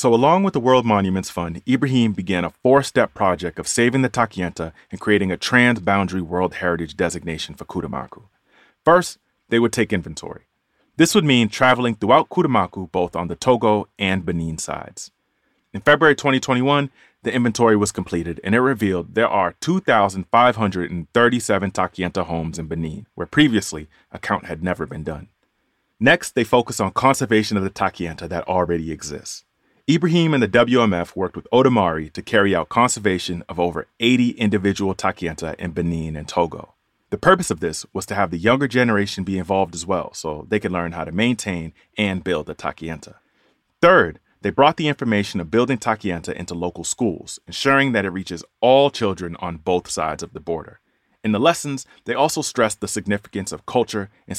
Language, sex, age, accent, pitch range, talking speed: English, male, 30-49, American, 85-120 Hz, 175 wpm